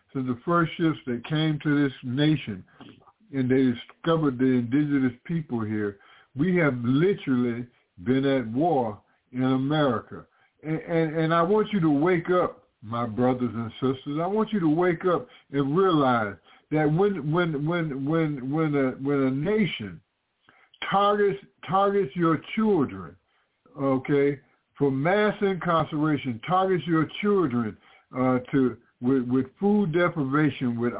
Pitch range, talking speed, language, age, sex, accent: 125-165 Hz, 140 wpm, English, 50-69, male, American